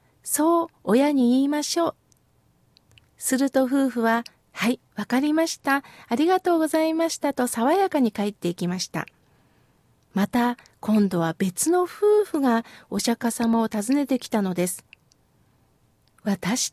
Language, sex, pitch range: Japanese, female, 230-320 Hz